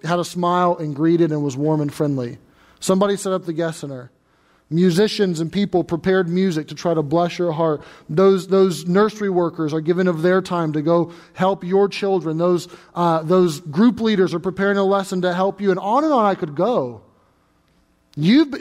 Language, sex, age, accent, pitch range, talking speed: English, male, 30-49, American, 170-235 Hz, 195 wpm